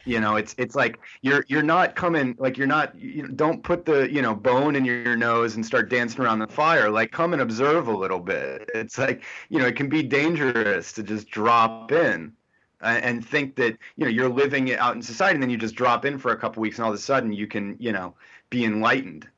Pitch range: 110-135 Hz